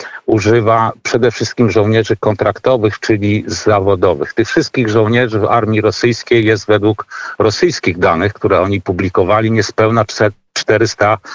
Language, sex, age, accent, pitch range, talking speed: Polish, male, 50-69, native, 105-115 Hz, 115 wpm